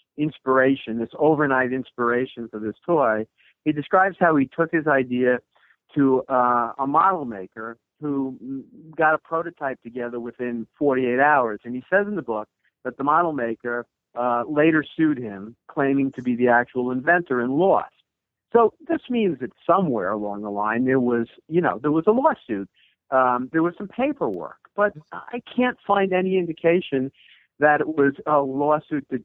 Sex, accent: male, American